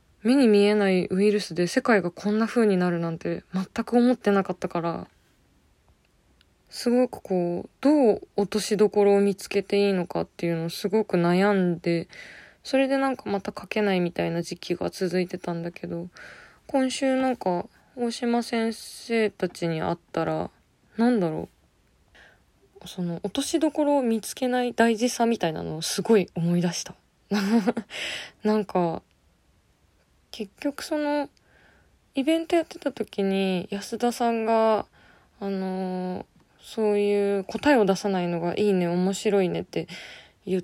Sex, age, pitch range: female, 20-39, 175-235 Hz